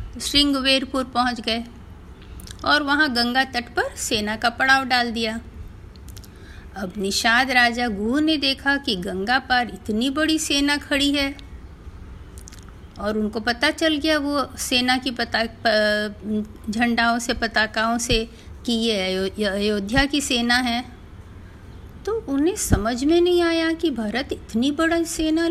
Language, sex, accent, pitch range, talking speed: Hindi, female, native, 210-300 Hz, 140 wpm